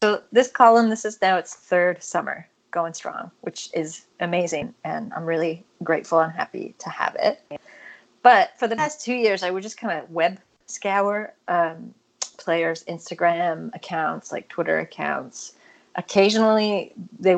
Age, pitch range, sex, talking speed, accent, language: 30-49, 170-220 Hz, female, 155 wpm, American, English